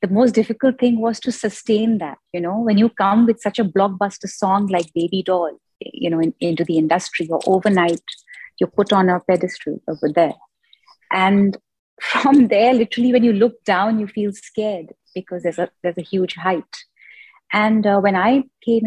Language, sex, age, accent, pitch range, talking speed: English, female, 30-49, Indian, 175-210 Hz, 180 wpm